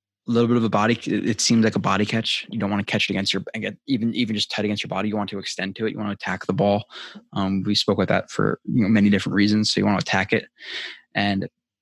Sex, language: male, English